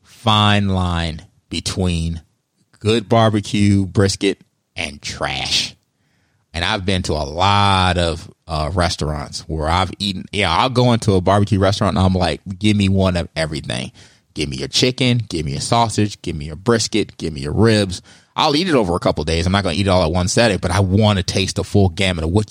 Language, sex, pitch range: English, male, 85-105 Hz